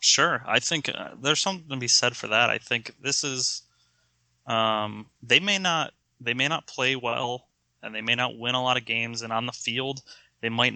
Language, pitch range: English, 105-120 Hz